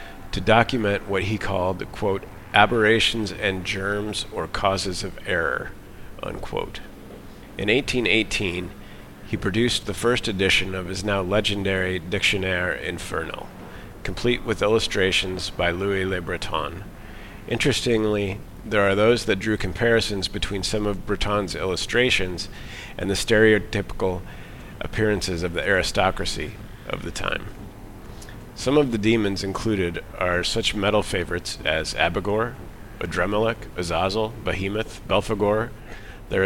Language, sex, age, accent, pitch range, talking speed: English, male, 40-59, American, 95-110 Hz, 120 wpm